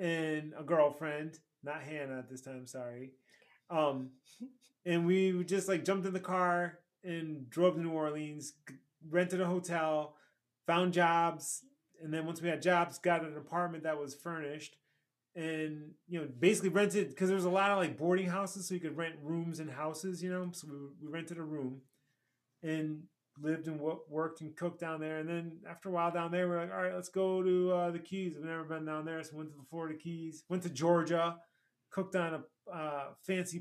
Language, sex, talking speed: English, male, 205 wpm